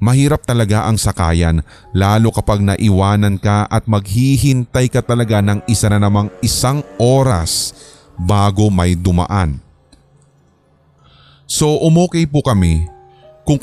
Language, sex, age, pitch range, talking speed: Filipino, male, 20-39, 90-125 Hz, 115 wpm